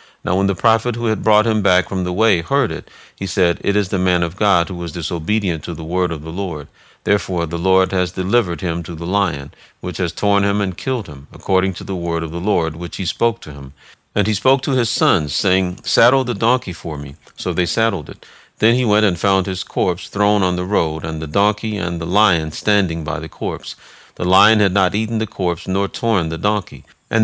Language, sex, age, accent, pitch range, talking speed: English, male, 50-69, American, 85-105 Hz, 240 wpm